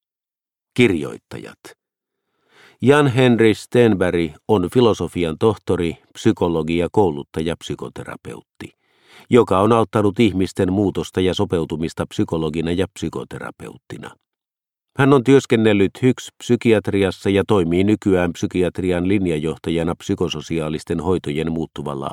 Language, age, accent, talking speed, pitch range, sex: Finnish, 50-69, native, 90 wpm, 85-105 Hz, male